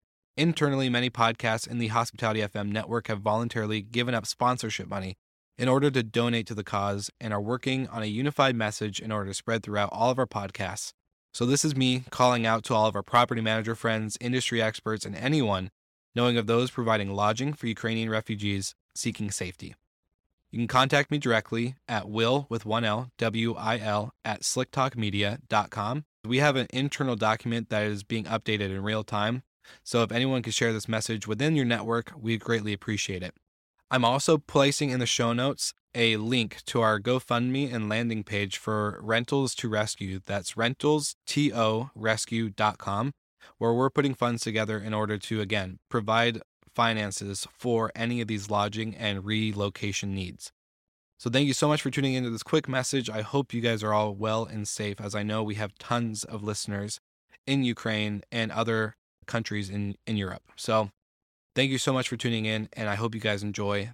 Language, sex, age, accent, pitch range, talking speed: English, male, 20-39, American, 105-120 Hz, 185 wpm